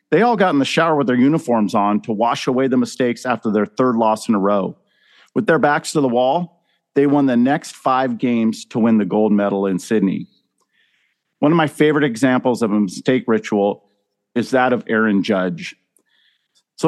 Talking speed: 200 wpm